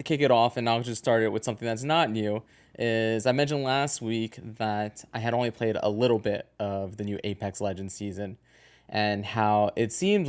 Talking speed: 215 wpm